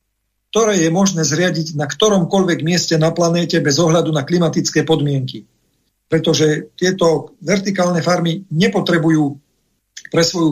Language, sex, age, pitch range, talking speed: Slovak, male, 50-69, 150-185 Hz, 120 wpm